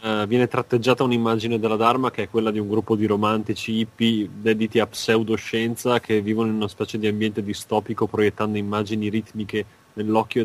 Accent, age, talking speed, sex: native, 20-39, 170 wpm, male